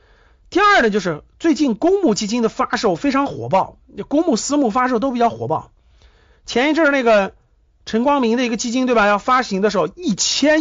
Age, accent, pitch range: 50-69, native, 195-280 Hz